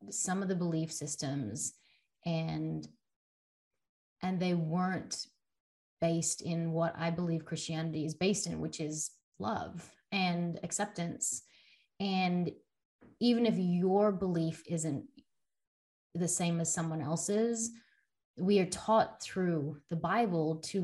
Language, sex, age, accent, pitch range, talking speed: English, female, 20-39, American, 165-195 Hz, 120 wpm